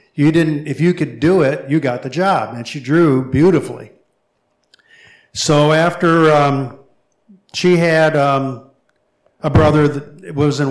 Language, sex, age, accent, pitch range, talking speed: English, male, 50-69, American, 125-155 Hz, 145 wpm